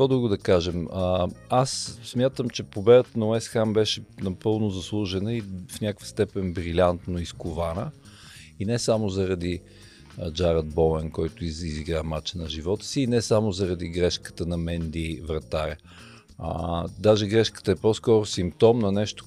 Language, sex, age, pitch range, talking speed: Bulgarian, male, 50-69, 85-110 Hz, 155 wpm